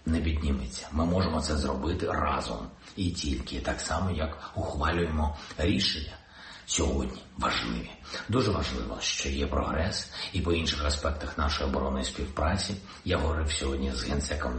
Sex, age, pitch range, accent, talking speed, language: male, 50-69, 70-90 Hz, native, 135 wpm, Ukrainian